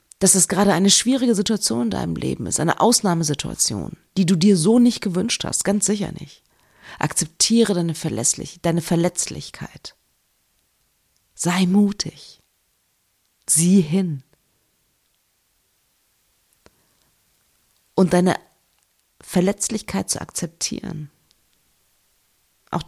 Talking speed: 90 wpm